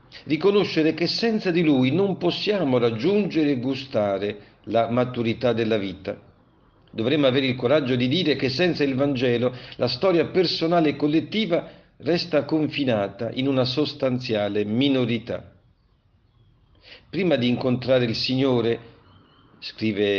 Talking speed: 120 wpm